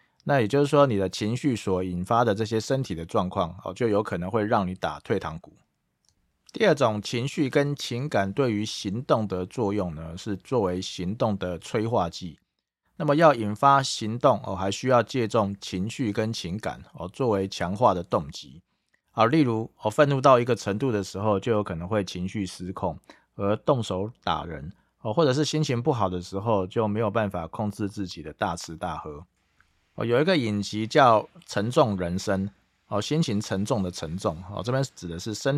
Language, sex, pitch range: Chinese, male, 95-125 Hz